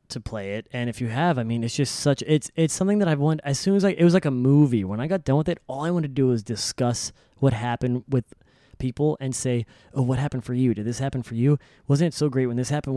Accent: American